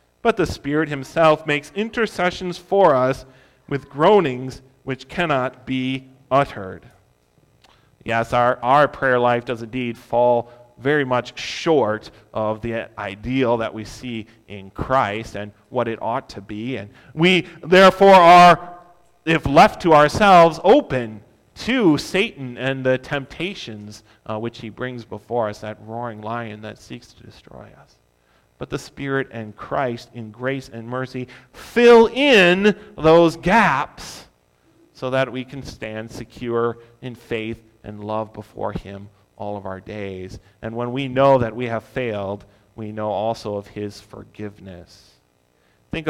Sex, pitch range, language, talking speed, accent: male, 105-145 Hz, English, 145 wpm, American